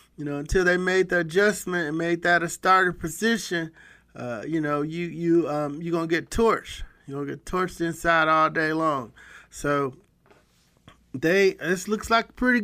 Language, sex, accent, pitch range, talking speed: English, male, American, 170-210 Hz, 195 wpm